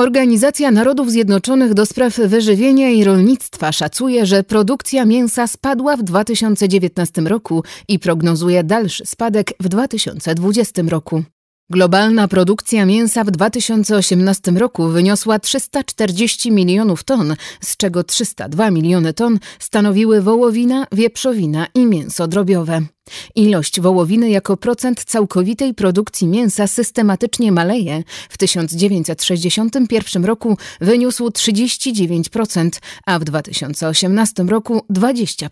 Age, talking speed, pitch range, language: 30-49, 105 wpm, 180-230 Hz, Polish